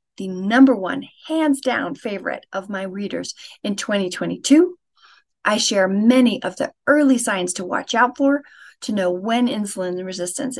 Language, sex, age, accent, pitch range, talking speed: English, female, 40-59, American, 195-290 Hz, 145 wpm